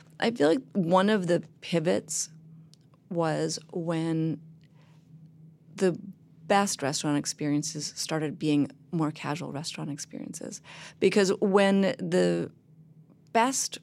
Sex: female